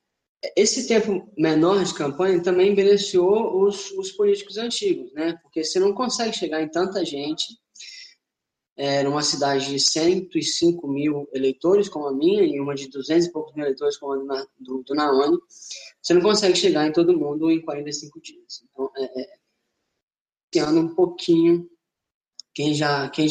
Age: 10-29